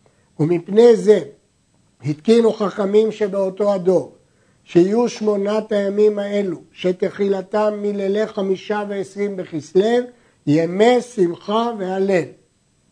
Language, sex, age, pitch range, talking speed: Hebrew, male, 60-79, 170-210 Hz, 85 wpm